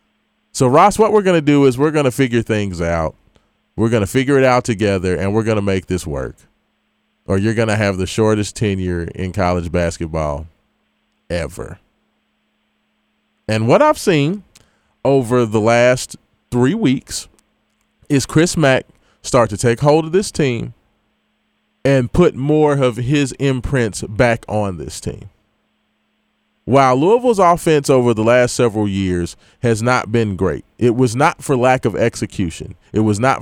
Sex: male